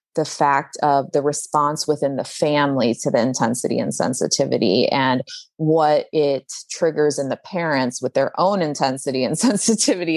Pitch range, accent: 135-165 Hz, American